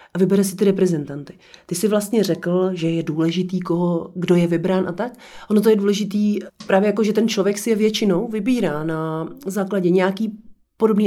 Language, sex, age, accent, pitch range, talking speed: Czech, female, 30-49, native, 180-200 Hz, 190 wpm